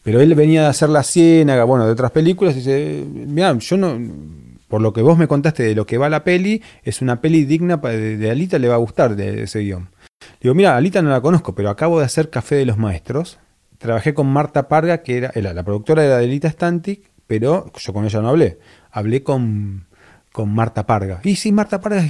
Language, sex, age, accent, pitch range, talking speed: Spanish, male, 30-49, Argentinian, 110-160 Hz, 235 wpm